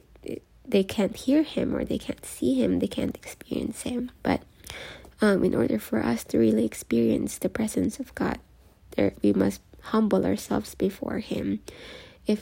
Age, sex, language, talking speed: 20-39, female, English, 160 wpm